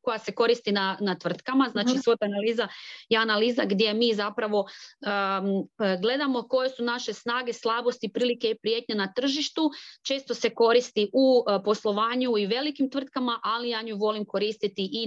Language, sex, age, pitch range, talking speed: Croatian, female, 30-49, 200-240 Hz, 165 wpm